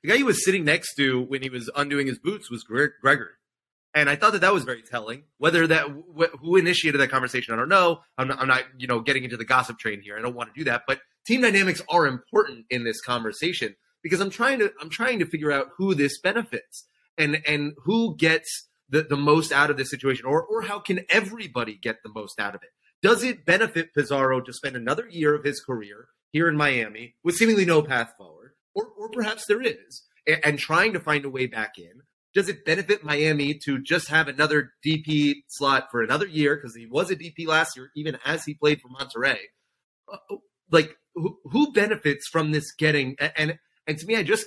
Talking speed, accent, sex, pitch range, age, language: 220 wpm, American, male, 130-175 Hz, 30-49, English